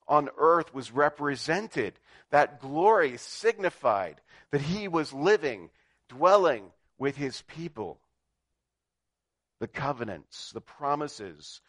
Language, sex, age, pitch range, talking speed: English, male, 50-69, 90-145 Hz, 100 wpm